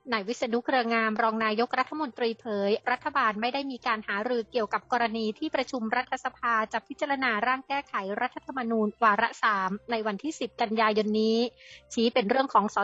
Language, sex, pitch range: Thai, female, 210-255 Hz